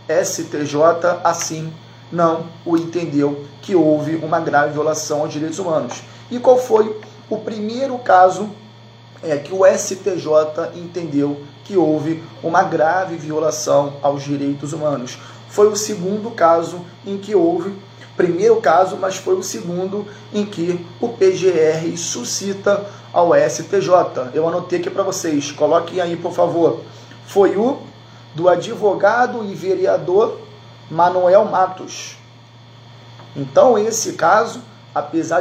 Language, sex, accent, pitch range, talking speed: Portuguese, male, Brazilian, 145-195 Hz, 120 wpm